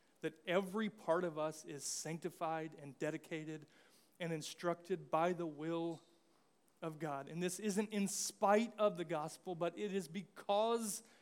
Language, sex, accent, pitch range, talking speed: English, male, American, 165-220 Hz, 150 wpm